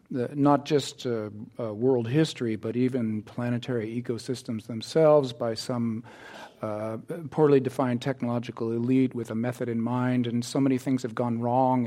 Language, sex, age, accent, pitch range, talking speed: English, male, 50-69, American, 120-140 Hz, 155 wpm